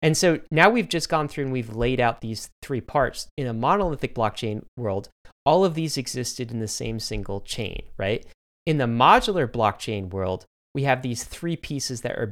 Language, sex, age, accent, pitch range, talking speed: English, male, 30-49, American, 115-160 Hz, 200 wpm